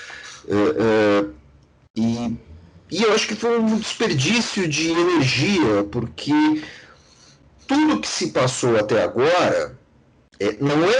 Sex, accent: male, Brazilian